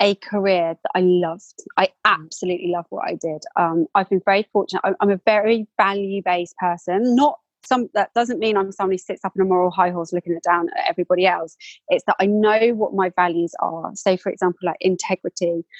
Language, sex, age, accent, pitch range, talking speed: English, female, 20-39, British, 180-225 Hz, 210 wpm